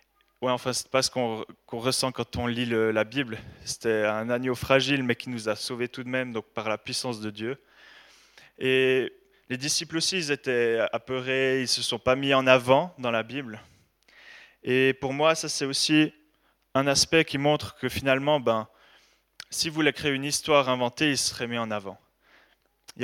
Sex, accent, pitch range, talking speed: male, French, 115-140 Hz, 200 wpm